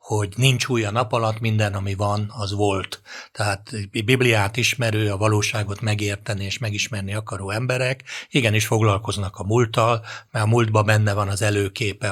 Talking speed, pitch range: 165 wpm, 105-115 Hz